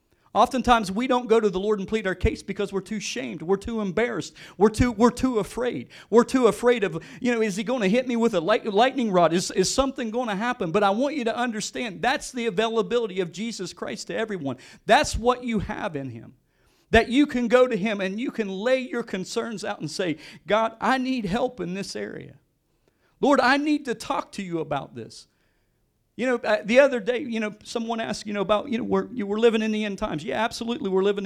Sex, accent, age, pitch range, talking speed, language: male, American, 40-59, 190-245 Hz, 230 wpm, English